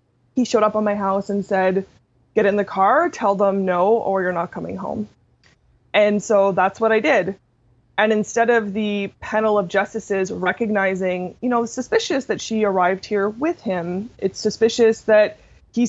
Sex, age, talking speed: female, 20-39, 180 wpm